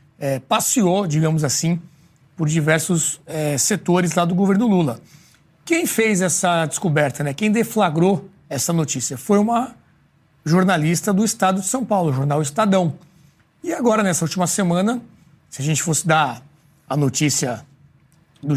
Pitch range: 145-195 Hz